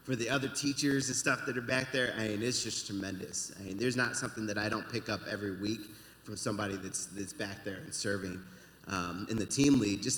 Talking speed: 240 wpm